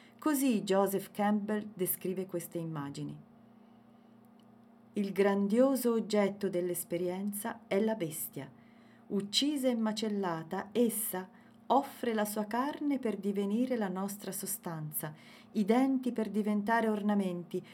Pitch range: 185-230 Hz